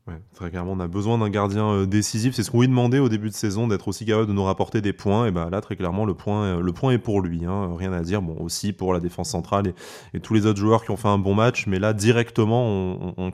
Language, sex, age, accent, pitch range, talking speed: French, male, 20-39, French, 95-115 Hz, 310 wpm